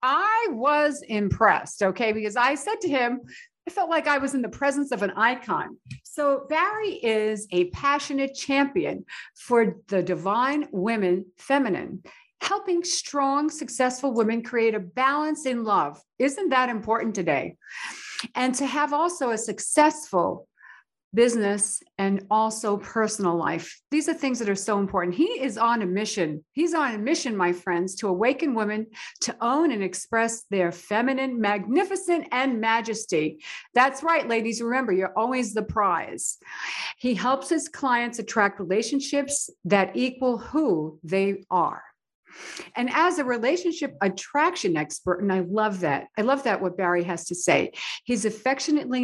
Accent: American